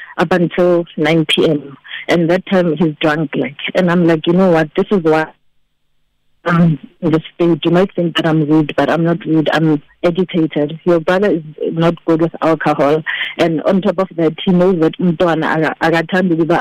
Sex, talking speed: female, 190 wpm